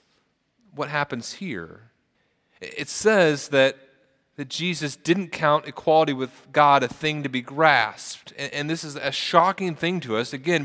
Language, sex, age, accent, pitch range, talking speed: English, male, 30-49, American, 110-150 Hz, 160 wpm